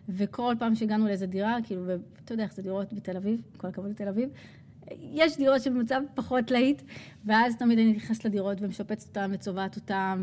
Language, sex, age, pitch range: Hebrew, female, 30-49, 190-220 Hz